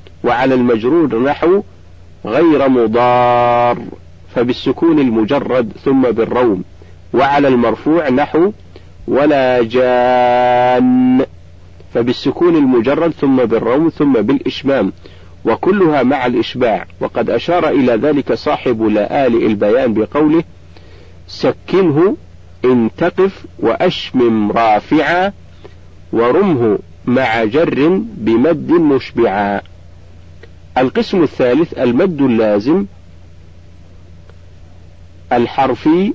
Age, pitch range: 50-69, 85-140 Hz